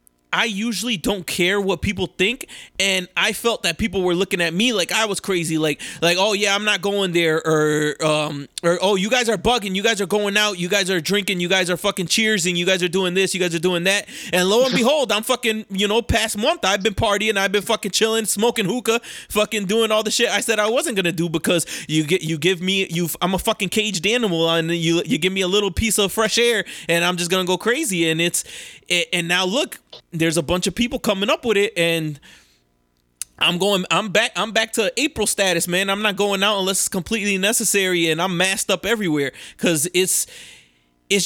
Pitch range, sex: 175-215 Hz, male